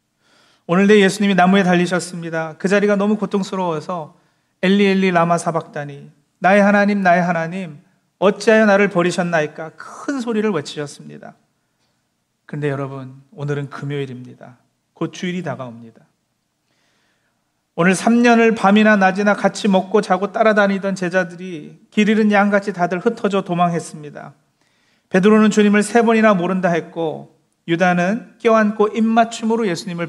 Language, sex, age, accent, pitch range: Korean, male, 40-59, native, 155-205 Hz